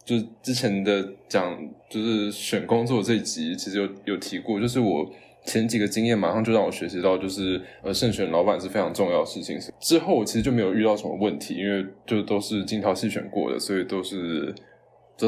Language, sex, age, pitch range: Chinese, male, 20-39, 100-115 Hz